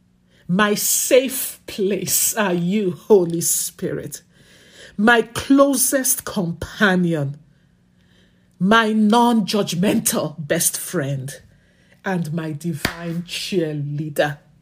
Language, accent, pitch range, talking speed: English, Nigerian, 180-280 Hz, 75 wpm